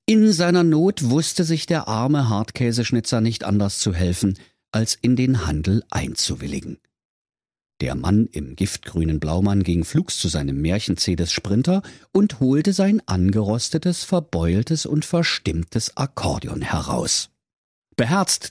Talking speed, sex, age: 125 wpm, male, 50-69